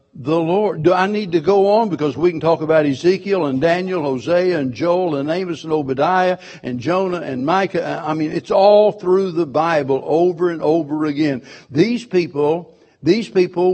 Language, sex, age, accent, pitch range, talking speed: English, male, 60-79, American, 150-185 Hz, 185 wpm